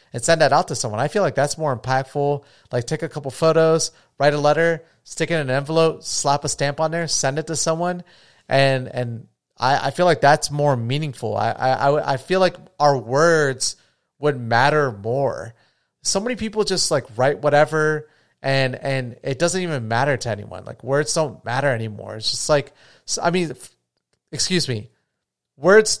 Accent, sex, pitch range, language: American, male, 125-160 Hz, English